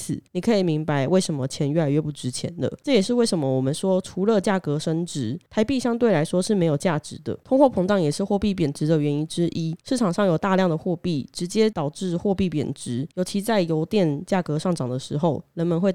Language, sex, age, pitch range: Chinese, female, 20-39, 150-195 Hz